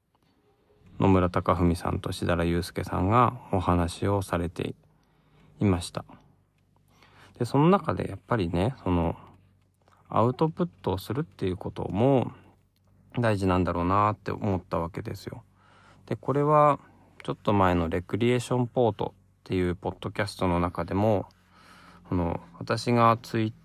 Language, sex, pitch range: Japanese, male, 90-110 Hz